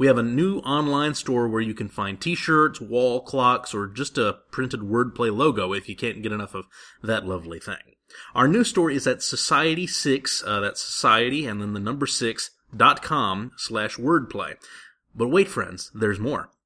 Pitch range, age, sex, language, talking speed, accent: 115-150 Hz, 30-49, male, English, 180 wpm, American